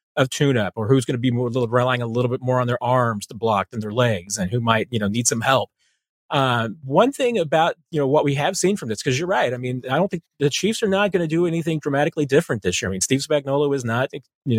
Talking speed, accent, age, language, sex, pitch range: 280 wpm, American, 40-59, English, male, 120-155 Hz